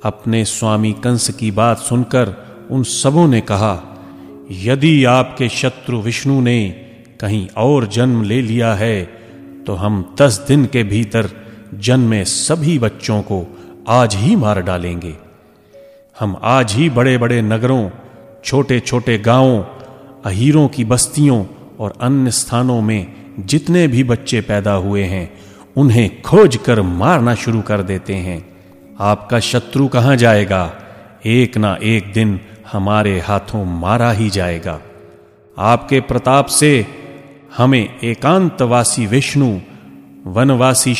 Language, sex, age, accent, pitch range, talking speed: Hindi, male, 30-49, native, 100-125 Hz, 125 wpm